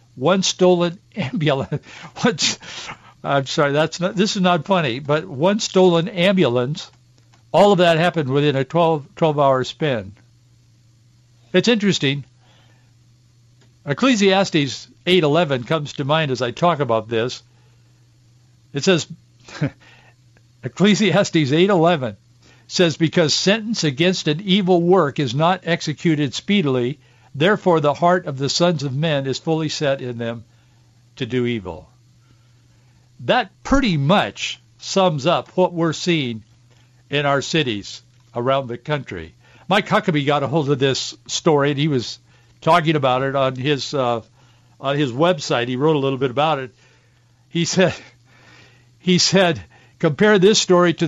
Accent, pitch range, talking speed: American, 120-170 Hz, 140 wpm